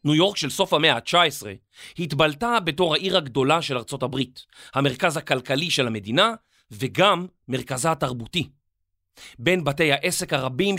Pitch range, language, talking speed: 135-195 Hz, Hebrew, 135 wpm